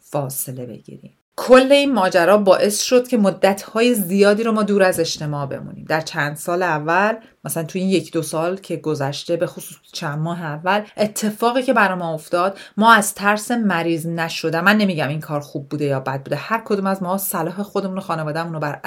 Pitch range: 165-210 Hz